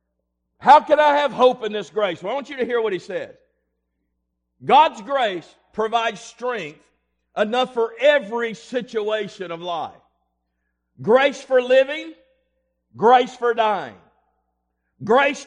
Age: 50-69